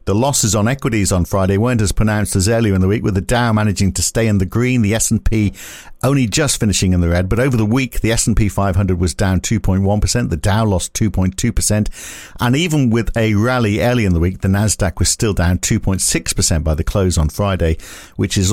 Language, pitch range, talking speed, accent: English, 95-115 Hz, 215 wpm, British